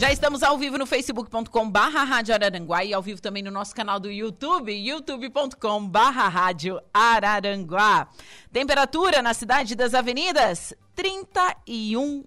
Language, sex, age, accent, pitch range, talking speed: Portuguese, female, 40-59, Brazilian, 185-250 Hz, 130 wpm